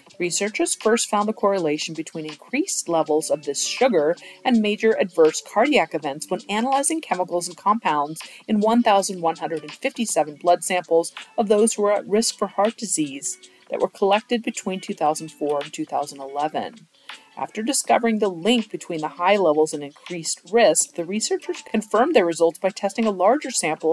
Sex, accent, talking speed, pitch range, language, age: female, American, 155 wpm, 155-220 Hz, English, 40-59